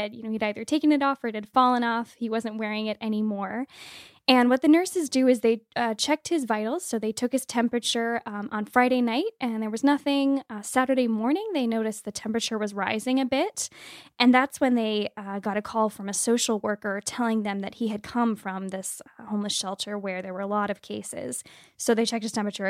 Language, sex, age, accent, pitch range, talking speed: English, female, 10-29, American, 200-235 Hz, 225 wpm